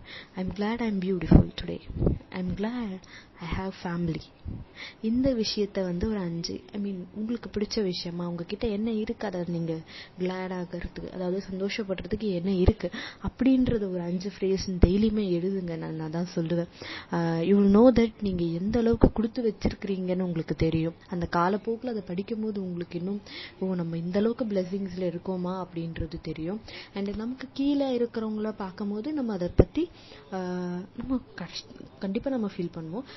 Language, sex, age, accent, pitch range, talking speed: Tamil, female, 20-39, native, 170-215 Hz, 105 wpm